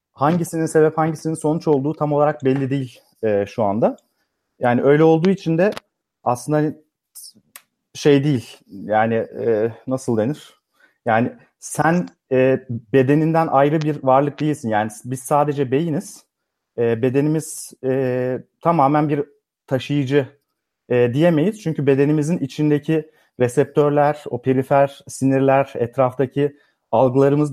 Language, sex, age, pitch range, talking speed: Turkish, male, 40-59, 125-150 Hz, 115 wpm